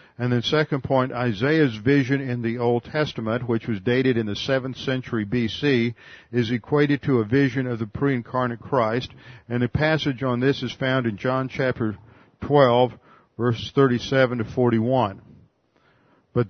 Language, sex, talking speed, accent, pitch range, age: English, male, 160 wpm, American, 115-140 Hz, 50-69